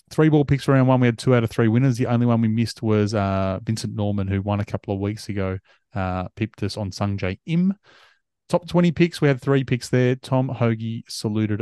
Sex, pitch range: male, 100-125 Hz